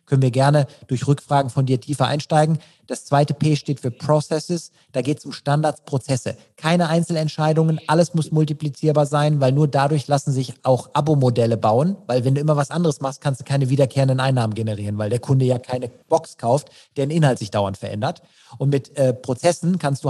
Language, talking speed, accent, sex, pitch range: German, 195 wpm, German, male, 130-155 Hz